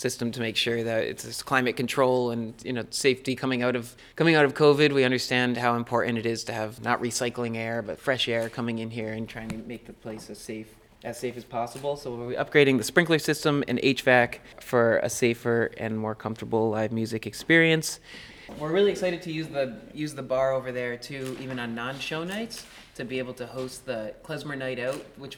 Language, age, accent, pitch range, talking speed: English, 30-49, American, 120-145 Hz, 220 wpm